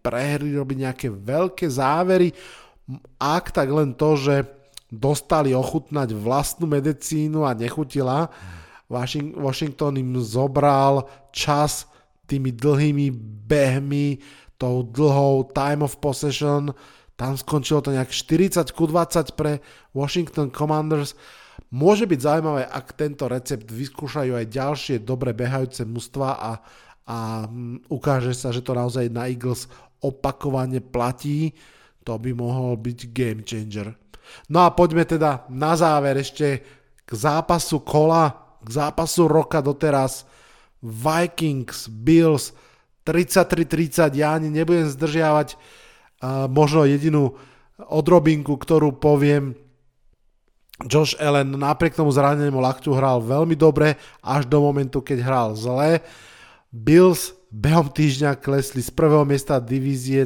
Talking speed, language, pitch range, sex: 115 wpm, Slovak, 130-150 Hz, male